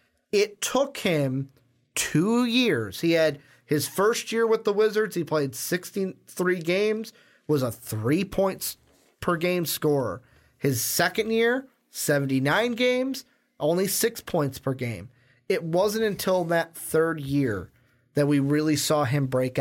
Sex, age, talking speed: male, 30-49, 140 wpm